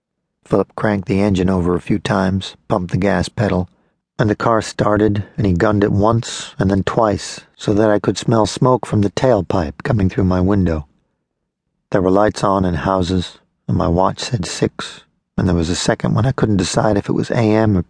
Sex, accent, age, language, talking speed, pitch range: male, American, 50-69, English, 210 wpm, 90-105 Hz